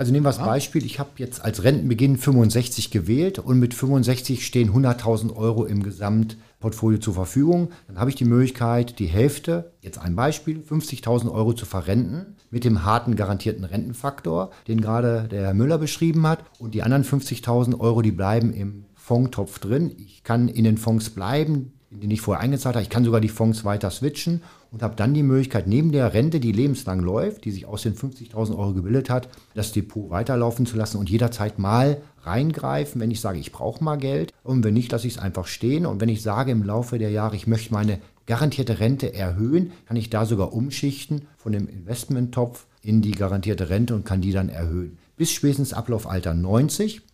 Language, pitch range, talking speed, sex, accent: German, 105-135 Hz, 195 wpm, male, German